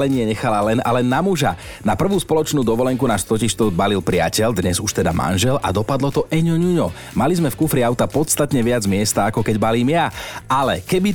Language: Slovak